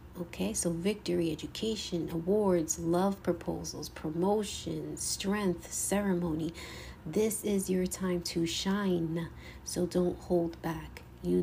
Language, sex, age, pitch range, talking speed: English, female, 30-49, 165-200 Hz, 110 wpm